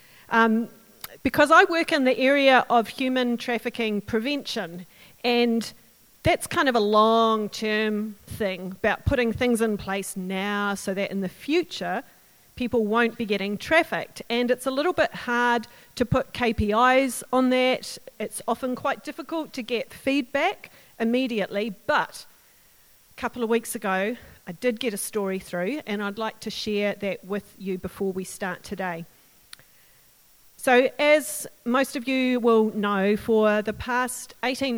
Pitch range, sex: 205-250 Hz, female